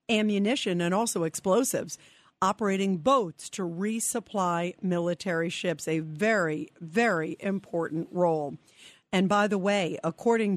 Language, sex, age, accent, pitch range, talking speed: English, female, 50-69, American, 165-215 Hz, 115 wpm